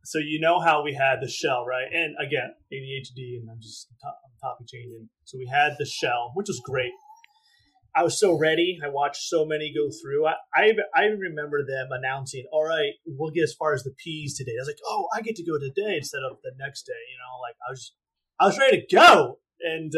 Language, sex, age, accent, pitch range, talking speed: English, male, 30-49, American, 135-180 Hz, 230 wpm